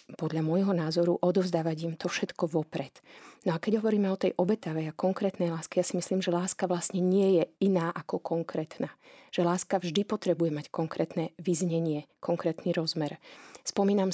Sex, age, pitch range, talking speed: female, 30-49, 160-180 Hz, 165 wpm